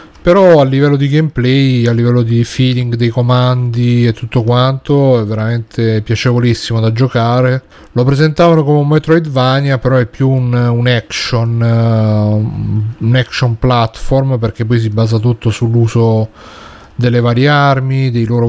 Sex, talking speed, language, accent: male, 145 wpm, Italian, native